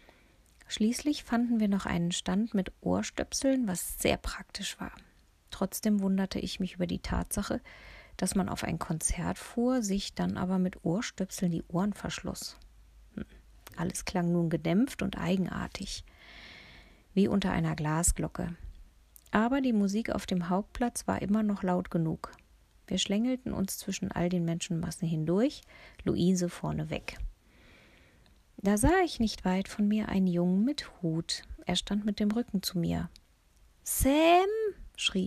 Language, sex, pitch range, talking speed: German, female, 175-215 Hz, 145 wpm